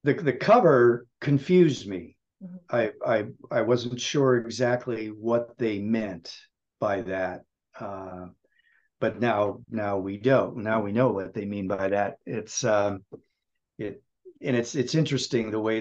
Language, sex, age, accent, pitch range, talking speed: English, male, 50-69, American, 105-125 Hz, 150 wpm